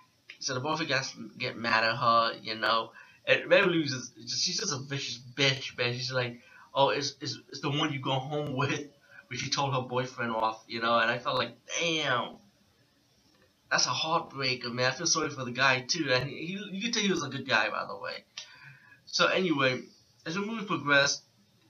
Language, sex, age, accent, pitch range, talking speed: English, male, 20-39, American, 120-140 Hz, 210 wpm